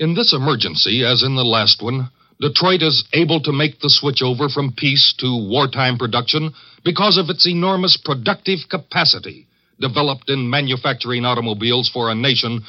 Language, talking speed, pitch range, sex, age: English, 155 wpm, 125-165 Hz, male, 60-79